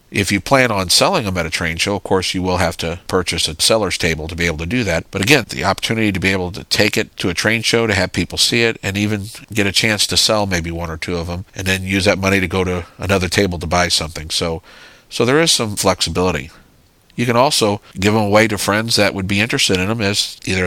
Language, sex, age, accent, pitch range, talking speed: English, male, 50-69, American, 90-105 Hz, 270 wpm